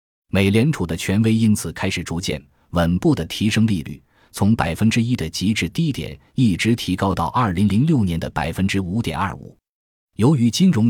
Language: Chinese